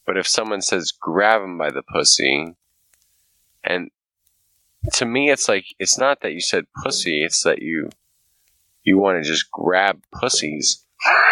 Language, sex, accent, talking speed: English, male, American, 155 wpm